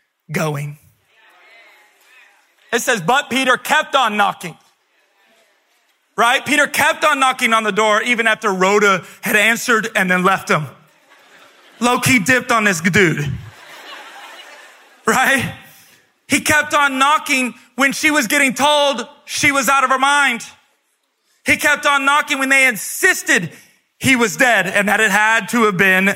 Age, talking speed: 30-49, 145 wpm